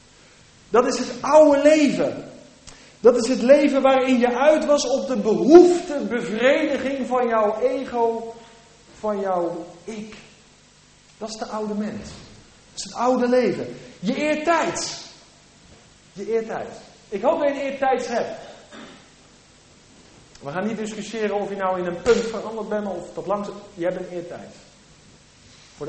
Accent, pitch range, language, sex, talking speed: Dutch, 200-265 Hz, English, male, 150 wpm